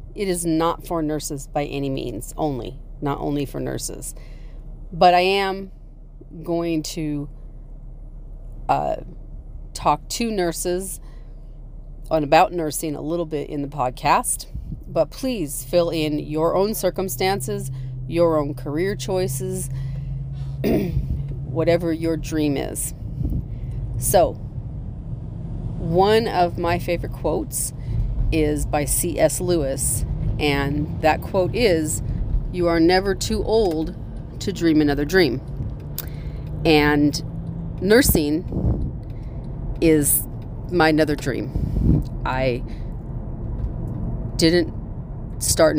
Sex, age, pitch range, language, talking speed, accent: female, 40-59, 130-165 Hz, English, 100 wpm, American